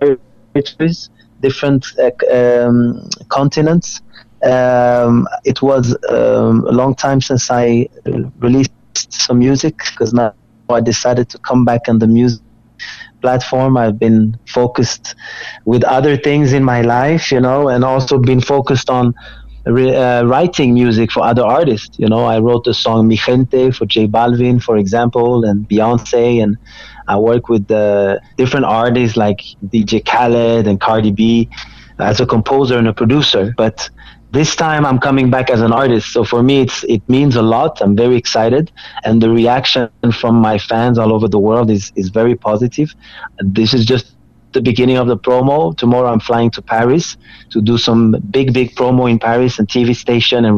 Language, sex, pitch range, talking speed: Portuguese, male, 115-130 Hz, 170 wpm